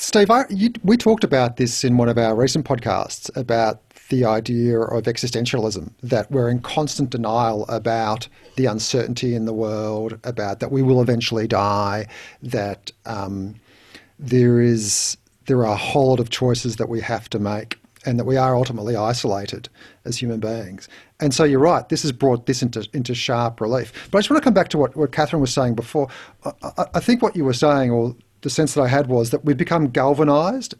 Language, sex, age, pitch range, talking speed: English, male, 50-69, 120-150 Hz, 205 wpm